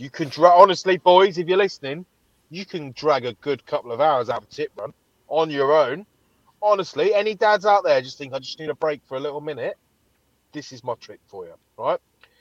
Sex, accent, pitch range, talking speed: male, British, 135-205 Hz, 225 wpm